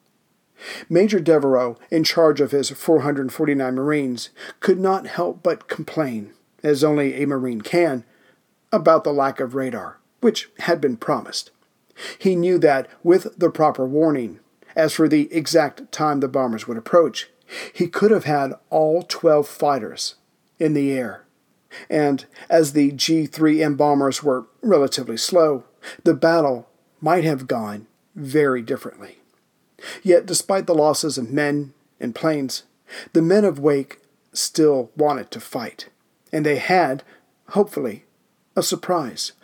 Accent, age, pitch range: American, 40-59, 135-165 Hz